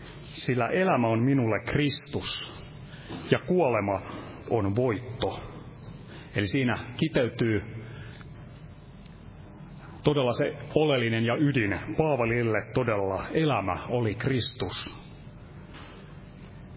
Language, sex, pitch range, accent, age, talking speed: Finnish, male, 115-145 Hz, native, 30-49, 80 wpm